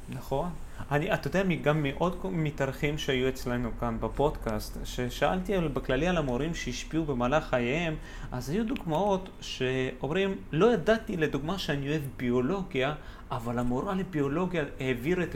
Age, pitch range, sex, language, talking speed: 30-49, 125-170 Hz, male, Hebrew, 125 wpm